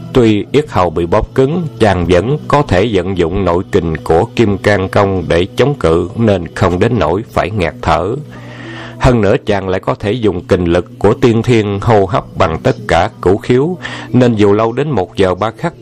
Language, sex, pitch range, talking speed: Vietnamese, male, 95-115 Hz, 210 wpm